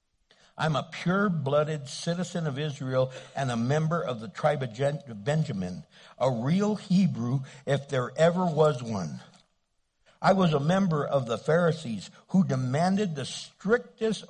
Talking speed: 140 wpm